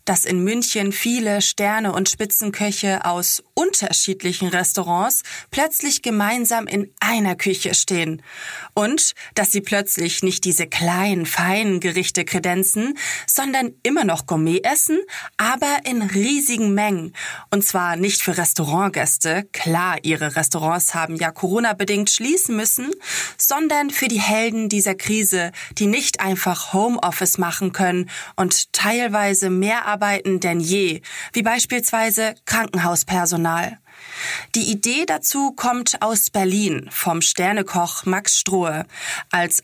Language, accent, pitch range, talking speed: German, German, 180-225 Hz, 120 wpm